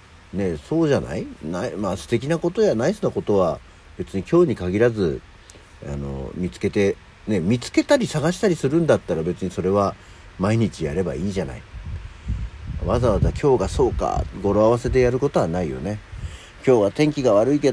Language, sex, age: Japanese, male, 50-69